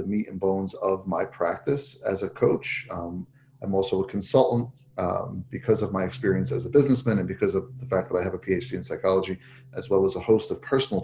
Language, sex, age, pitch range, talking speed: English, male, 30-49, 95-130 Hz, 230 wpm